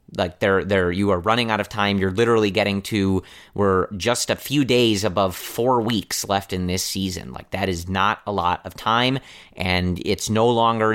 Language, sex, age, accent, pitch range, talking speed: English, male, 30-49, American, 95-110 Hz, 205 wpm